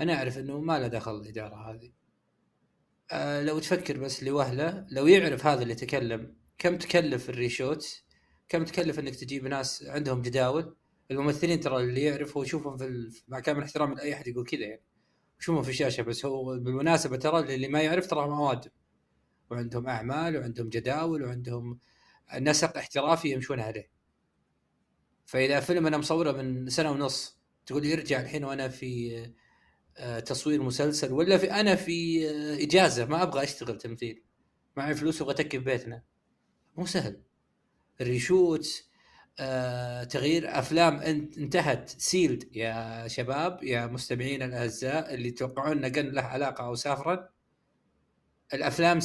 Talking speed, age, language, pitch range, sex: 140 wpm, 20-39, Arabic, 125-160 Hz, male